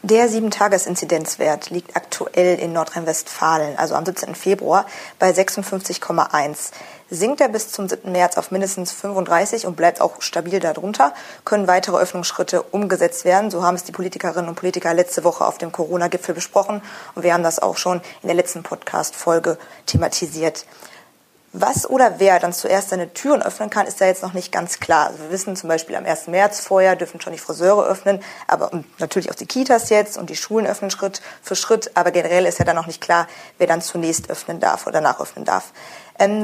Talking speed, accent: 190 wpm, German